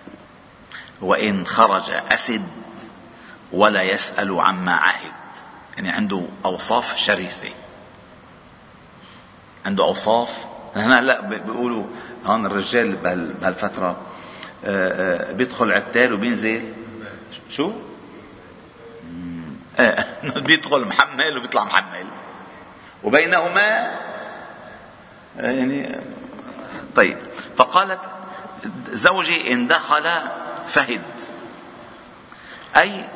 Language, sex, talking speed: Arabic, male, 65 wpm